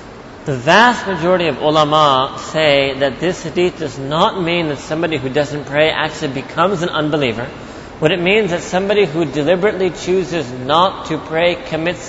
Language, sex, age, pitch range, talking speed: English, male, 30-49, 150-190 Hz, 170 wpm